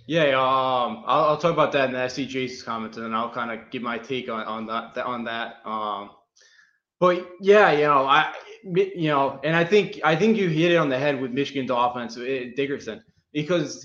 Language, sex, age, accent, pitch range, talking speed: English, male, 20-39, American, 130-165 Hz, 210 wpm